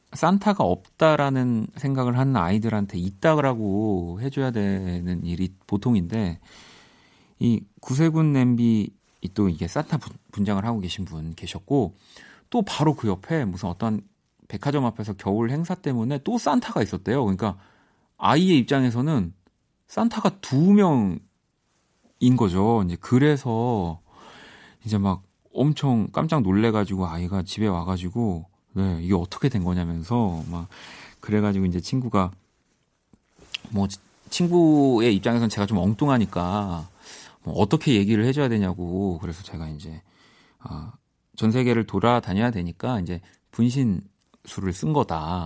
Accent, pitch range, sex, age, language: native, 90-125 Hz, male, 40-59, Korean